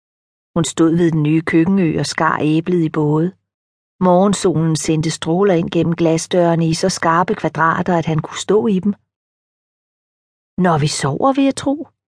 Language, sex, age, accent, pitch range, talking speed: Danish, female, 40-59, native, 145-190 Hz, 165 wpm